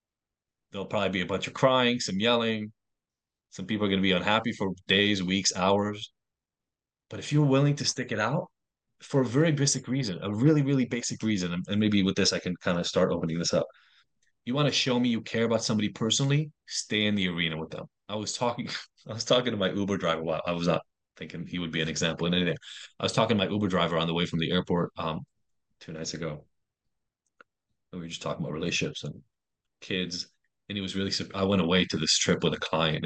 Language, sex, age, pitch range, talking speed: English, male, 20-39, 90-115 Hz, 230 wpm